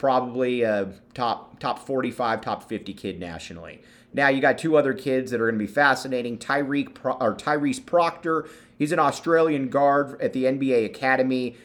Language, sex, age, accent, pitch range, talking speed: English, male, 30-49, American, 110-130 Hz, 170 wpm